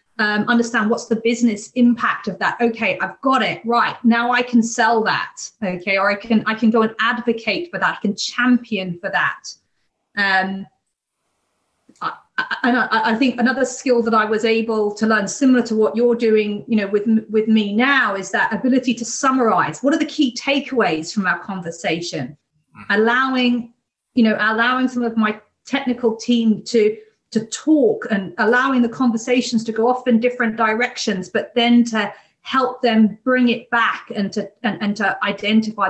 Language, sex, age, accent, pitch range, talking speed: English, female, 30-49, British, 205-245 Hz, 175 wpm